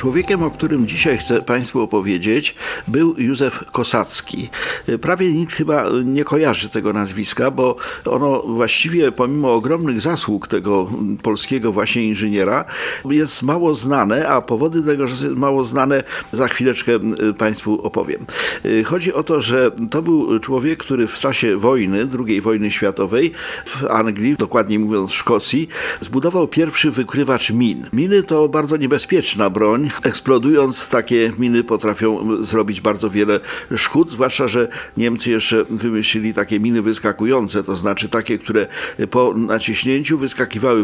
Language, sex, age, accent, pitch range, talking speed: Polish, male, 50-69, native, 110-140 Hz, 135 wpm